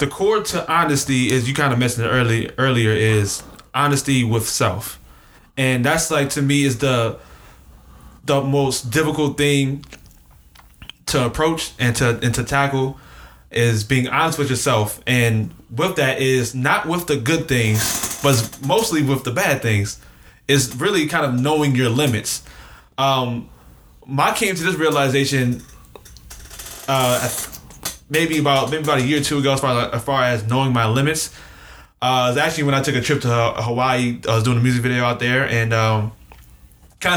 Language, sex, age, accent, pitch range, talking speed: English, male, 20-39, American, 115-145 Hz, 175 wpm